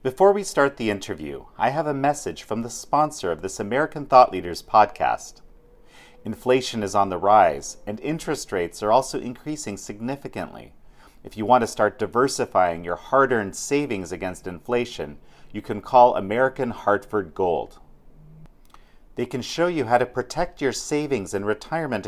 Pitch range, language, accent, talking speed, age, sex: 105-150 Hz, English, American, 160 wpm, 40-59, male